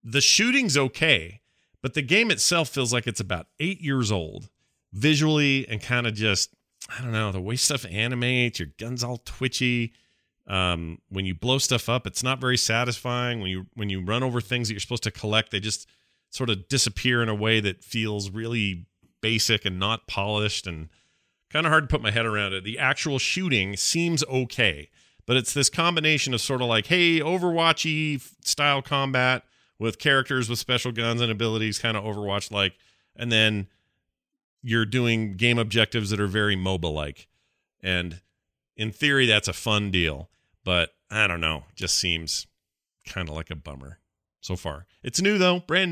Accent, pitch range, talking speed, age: American, 95-130 Hz, 185 wpm, 40-59